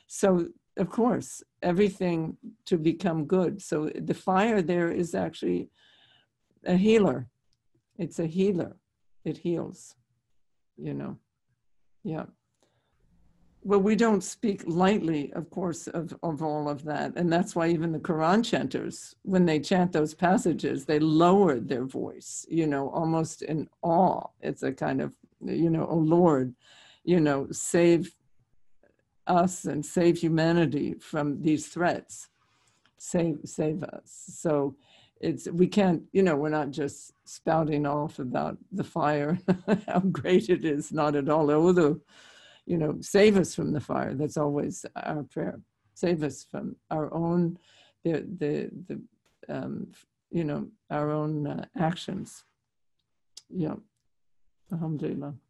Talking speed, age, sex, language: 135 wpm, 50-69, female, English